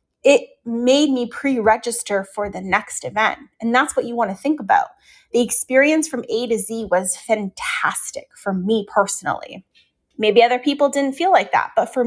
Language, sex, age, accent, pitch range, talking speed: English, female, 20-39, American, 215-270 Hz, 180 wpm